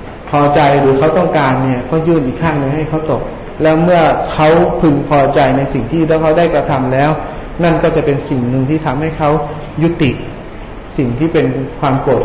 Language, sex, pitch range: Thai, male, 140-165 Hz